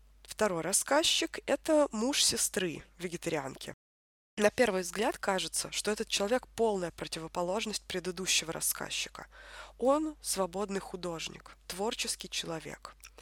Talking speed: 100 wpm